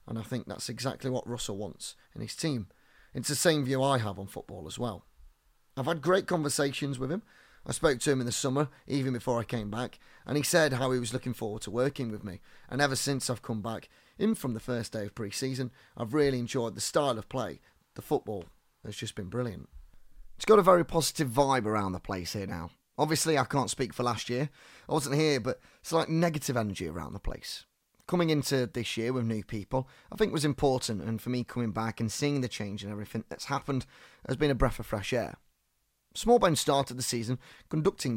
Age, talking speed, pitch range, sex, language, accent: 30-49, 225 wpm, 110-140 Hz, male, English, British